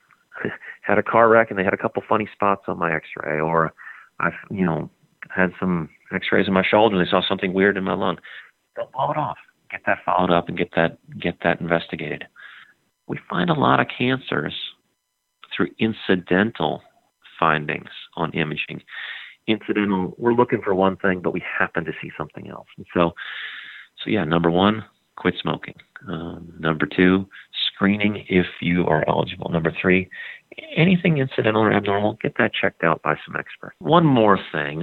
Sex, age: male, 40-59